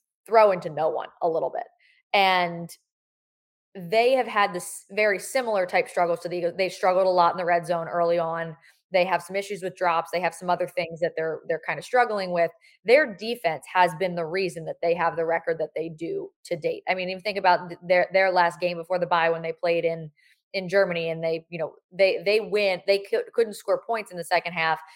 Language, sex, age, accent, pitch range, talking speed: English, female, 20-39, American, 170-200 Hz, 235 wpm